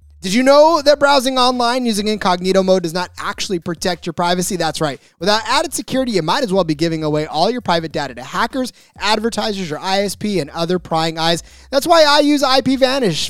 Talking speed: 205 wpm